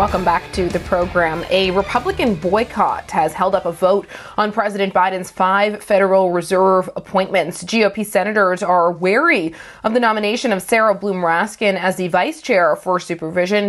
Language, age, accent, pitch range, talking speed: English, 30-49, American, 180-225 Hz, 160 wpm